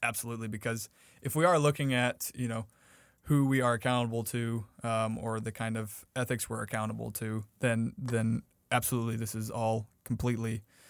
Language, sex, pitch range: English, male, 110-125 Hz